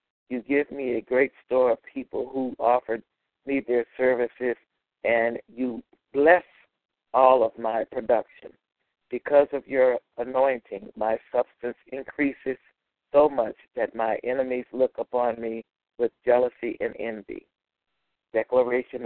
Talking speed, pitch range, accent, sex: 125 wpm, 125-145 Hz, American, male